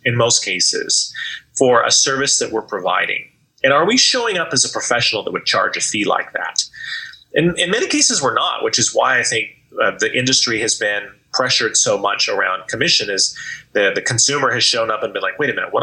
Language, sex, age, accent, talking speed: English, male, 30-49, American, 225 wpm